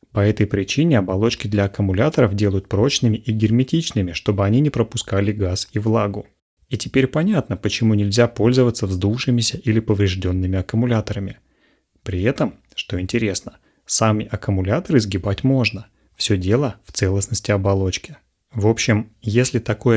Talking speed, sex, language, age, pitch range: 130 wpm, male, Russian, 30-49, 100-120 Hz